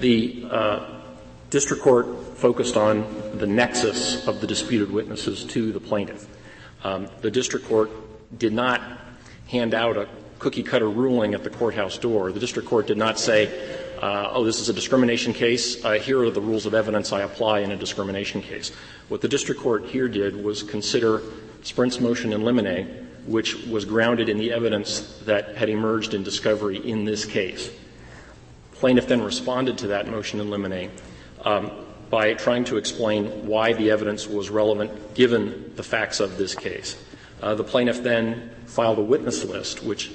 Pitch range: 105-120 Hz